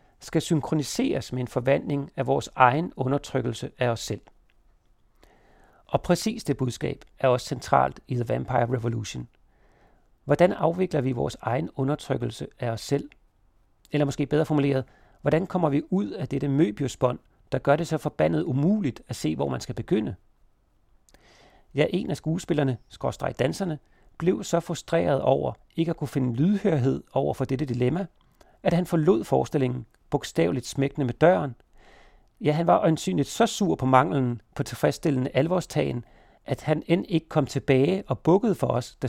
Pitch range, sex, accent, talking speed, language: 130-160 Hz, male, native, 160 wpm, Danish